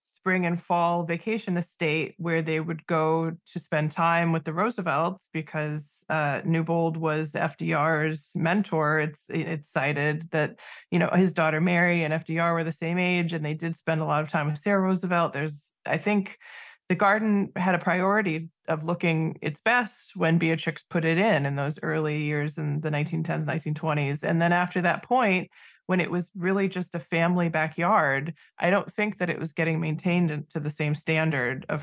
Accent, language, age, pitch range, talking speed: American, English, 20-39, 155-175 Hz, 185 wpm